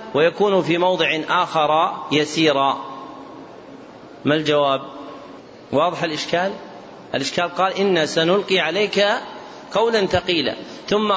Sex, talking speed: male, 90 wpm